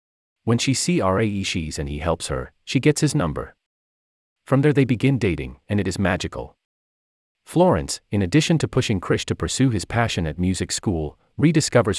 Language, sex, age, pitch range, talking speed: English, male, 30-49, 75-120 Hz, 180 wpm